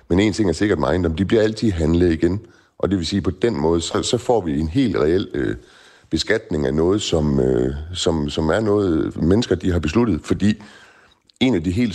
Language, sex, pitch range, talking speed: Danish, male, 80-105 Hz, 225 wpm